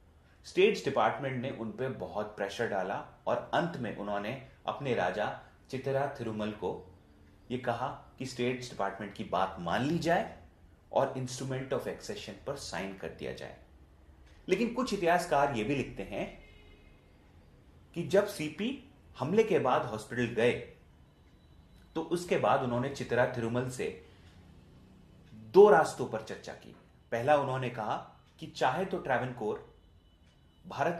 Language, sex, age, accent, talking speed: Hindi, male, 30-49, native, 135 wpm